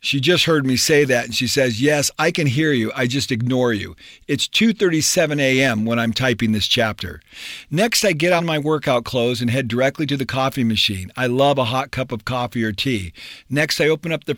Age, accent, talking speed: 50-69, American, 225 wpm